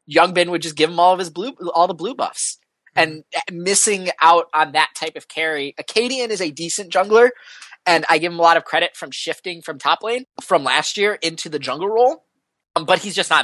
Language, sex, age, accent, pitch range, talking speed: English, male, 20-39, American, 145-180 Hz, 230 wpm